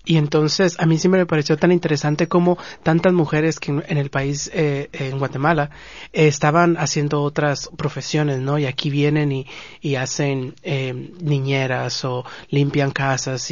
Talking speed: 160 wpm